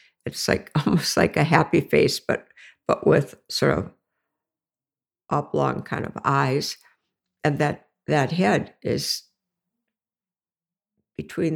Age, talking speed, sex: 60-79, 115 wpm, female